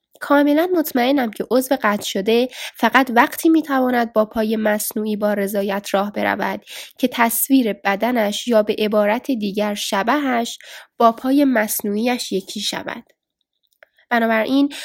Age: 10-29